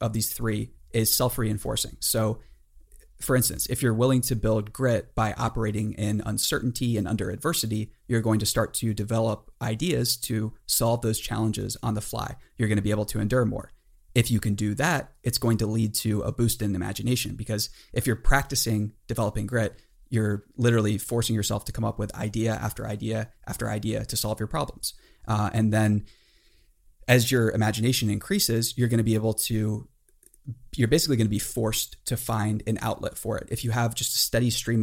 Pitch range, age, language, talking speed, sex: 105-120 Hz, 30-49, English, 195 wpm, male